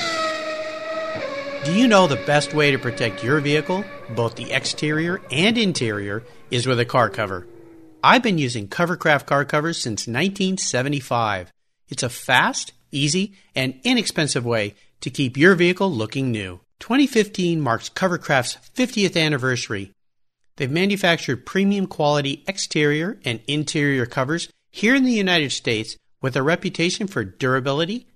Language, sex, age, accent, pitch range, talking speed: English, male, 50-69, American, 125-180 Hz, 135 wpm